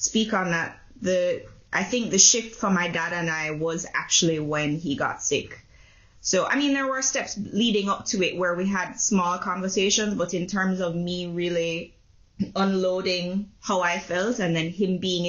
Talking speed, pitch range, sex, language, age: 190 wpm, 150-185 Hz, female, English, 20-39